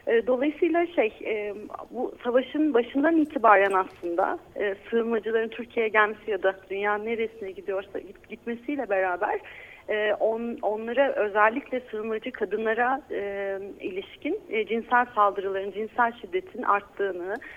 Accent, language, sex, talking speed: native, Turkish, female, 90 wpm